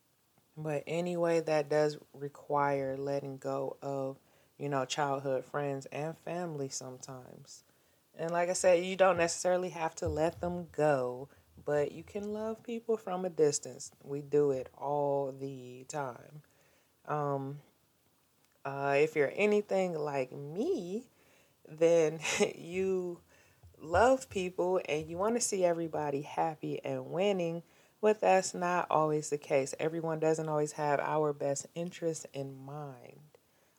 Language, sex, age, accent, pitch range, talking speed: English, female, 20-39, American, 140-175 Hz, 135 wpm